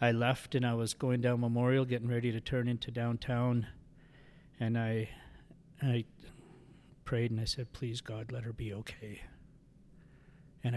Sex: male